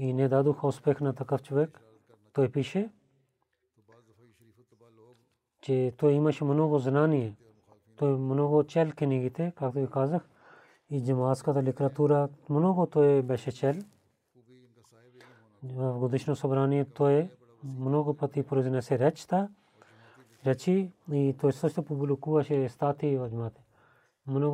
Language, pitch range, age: Bulgarian, 125-150 Hz, 30-49